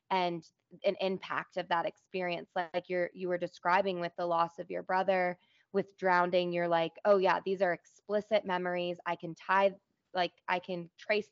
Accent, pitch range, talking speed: American, 175-195 Hz, 175 wpm